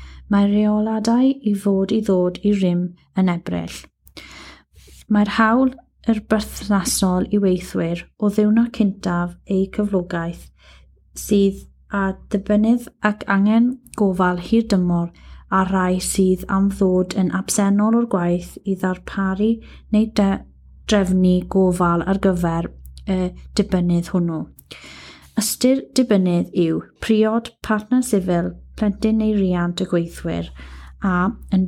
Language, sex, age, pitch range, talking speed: English, female, 30-49, 180-215 Hz, 110 wpm